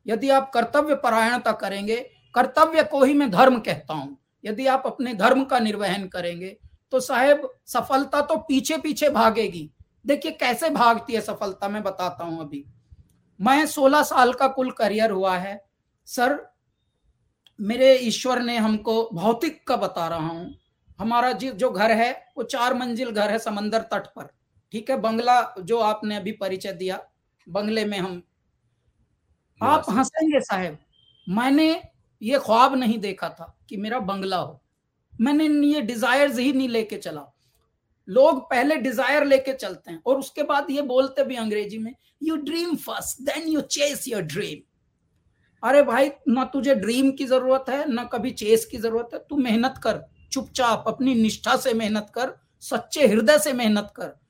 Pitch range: 210-270 Hz